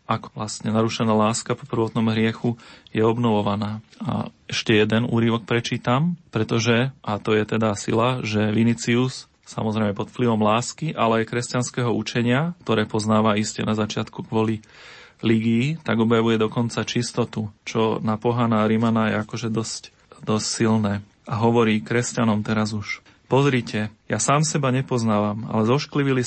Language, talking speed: Slovak, 140 wpm